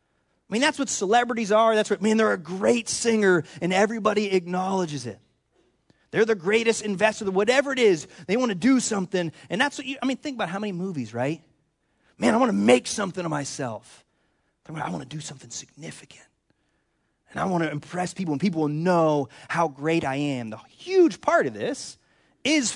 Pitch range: 155-230 Hz